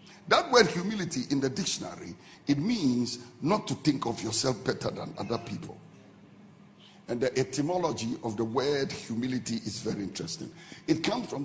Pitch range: 120-165 Hz